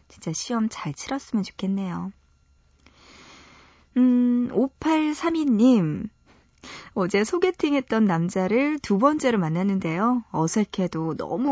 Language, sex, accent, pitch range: Korean, female, native, 185-255 Hz